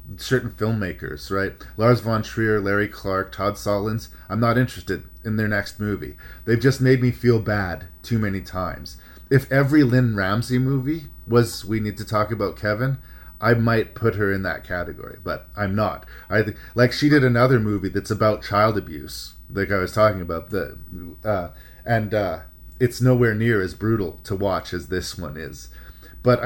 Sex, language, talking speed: male, English, 180 wpm